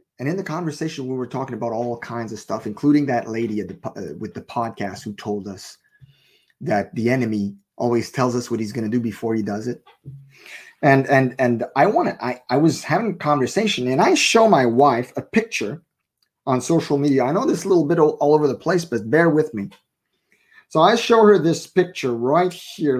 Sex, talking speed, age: male, 215 wpm, 30-49